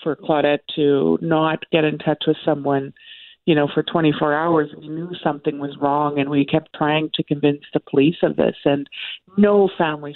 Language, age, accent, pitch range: English, 40-59, American, 155-185 Hz